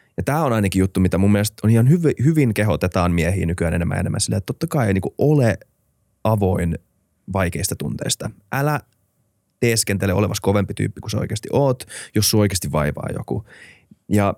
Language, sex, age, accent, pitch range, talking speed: Finnish, male, 20-39, native, 95-110 Hz, 170 wpm